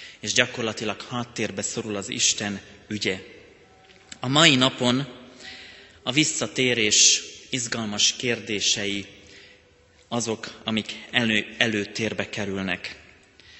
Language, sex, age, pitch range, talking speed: Hungarian, male, 30-49, 110-125 Hz, 80 wpm